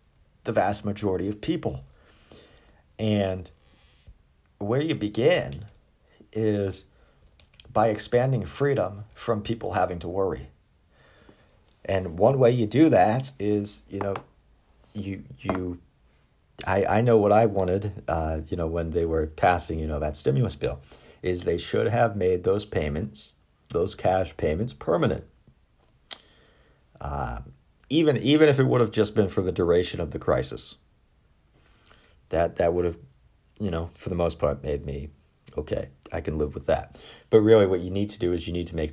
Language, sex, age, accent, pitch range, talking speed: English, male, 50-69, American, 80-105 Hz, 160 wpm